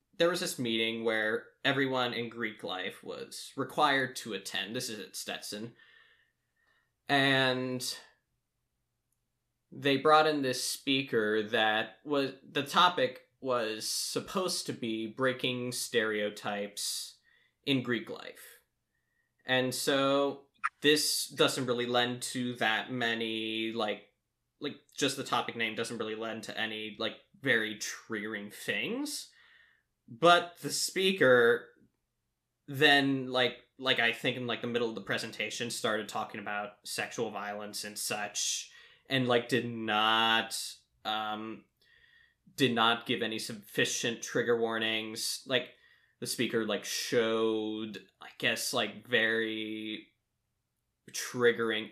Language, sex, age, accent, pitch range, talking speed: English, male, 10-29, American, 110-140 Hz, 120 wpm